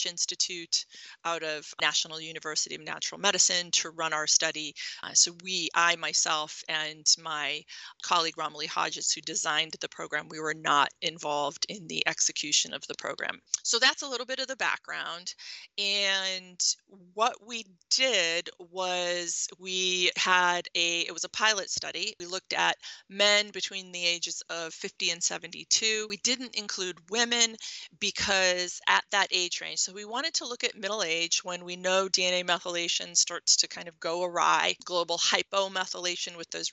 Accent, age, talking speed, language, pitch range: American, 30-49, 165 wpm, English, 170-195 Hz